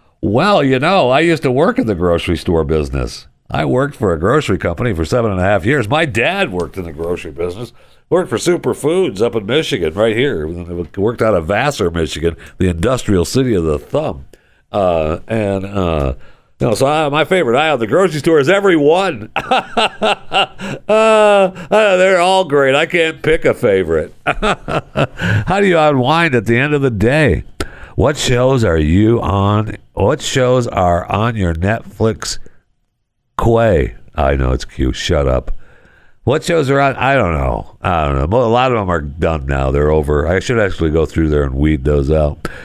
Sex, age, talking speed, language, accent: male, 60-79, 180 wpm, English, American